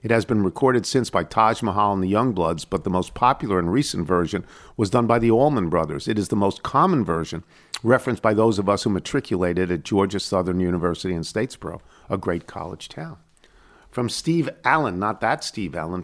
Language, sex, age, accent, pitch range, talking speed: English, male, 50-69, American, 90-120 Hz, 200 wpm